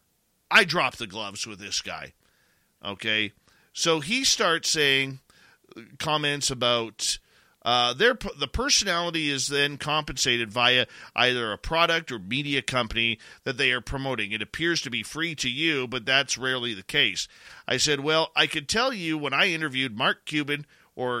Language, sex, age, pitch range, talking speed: English, male, 40-59, 120-170 Hz, 160 wpm